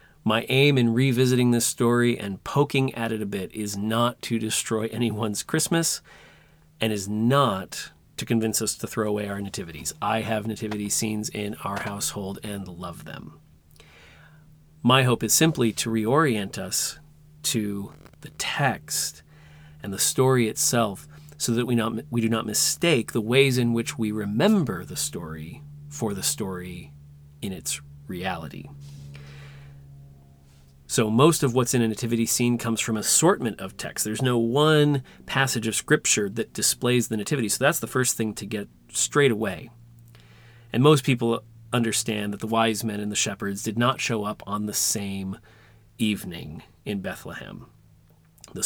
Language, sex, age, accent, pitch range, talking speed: English, male, 40-59, American, 105-120 Hz, 160 wpm